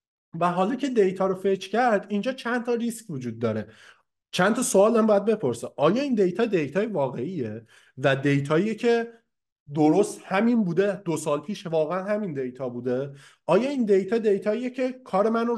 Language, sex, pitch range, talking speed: Persian, male, 160-225 Hz, 170 wpm